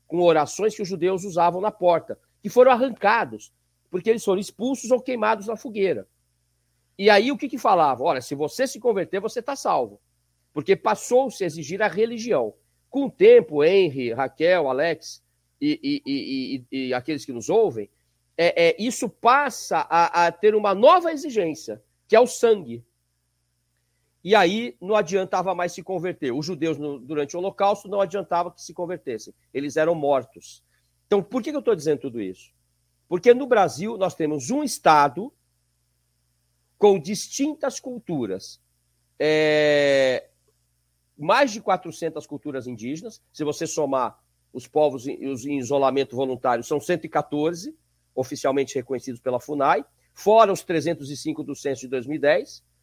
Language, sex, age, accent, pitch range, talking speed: Portuguese, male, 50-69, Brazilian, 125-210 Hz, 150 wpm